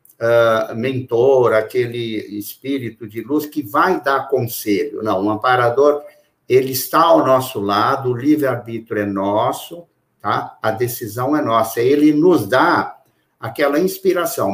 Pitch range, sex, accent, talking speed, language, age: 115-150 Hz, male, Brazilian, 135 wpm, Portuguese, 60-79